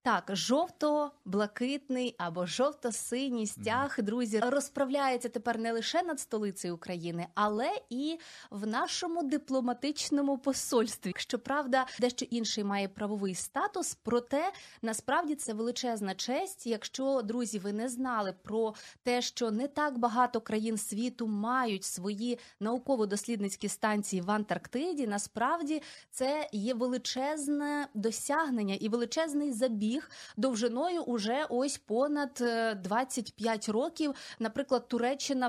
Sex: female